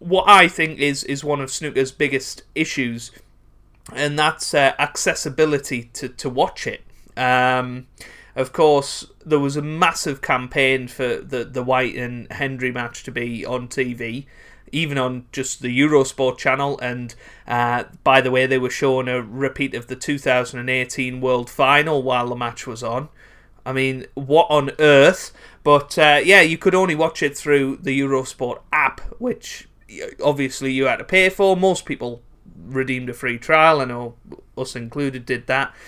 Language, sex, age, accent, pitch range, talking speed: English, male, 30-49, British, 120-145 Hz, 165 wpm